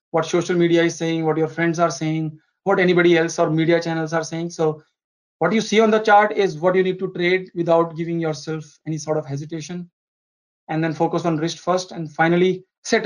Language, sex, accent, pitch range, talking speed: English, male, Indian, 160-185 Hz, 215 wpm